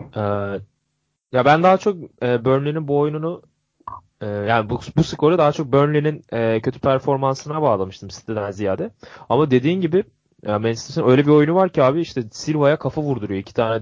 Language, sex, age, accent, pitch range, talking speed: Turkish, male, 20-39, native, 110-145 Hz, 170 wpm